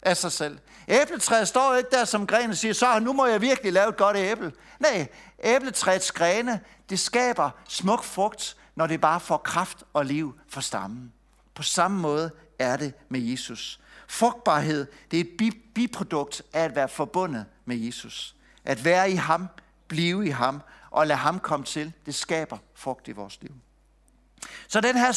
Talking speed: 175 wpm